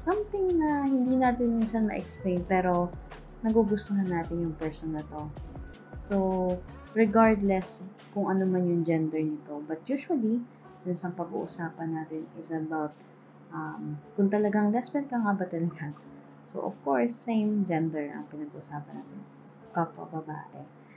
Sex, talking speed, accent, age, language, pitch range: female, 135 wpm, native, 20-39, Filipino, 150-195 Hz